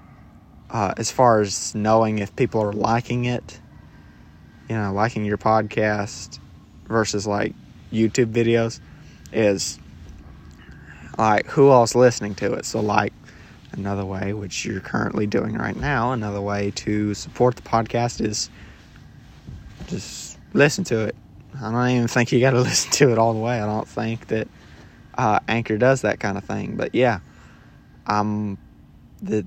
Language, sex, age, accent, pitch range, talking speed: English, male, 20-39, American, 105-115 Hz, 155 wpm